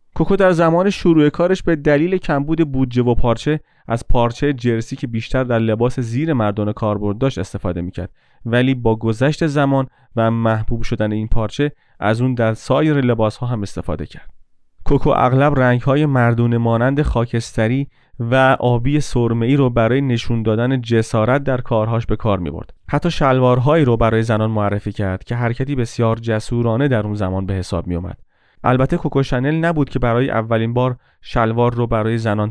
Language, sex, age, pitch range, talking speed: Persian, male, 30-49, 115-140 Hz, 170 wpm